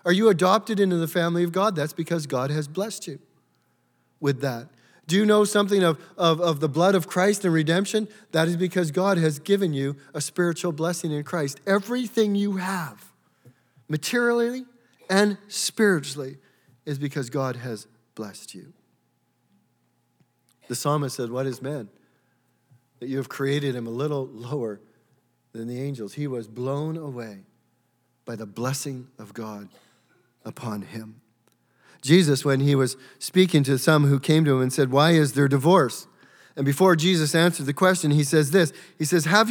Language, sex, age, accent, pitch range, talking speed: English, male, 40-59, American, 140-210 Hz, 165 wpm